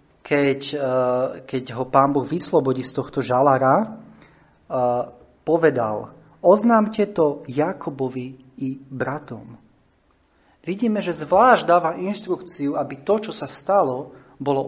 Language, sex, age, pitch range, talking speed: Slovak, male, 30-49, 120-145 Hz, 105 wpm